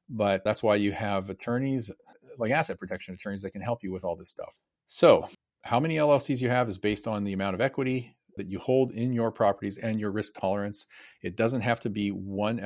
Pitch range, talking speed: 95-115 Hz, 225 wpm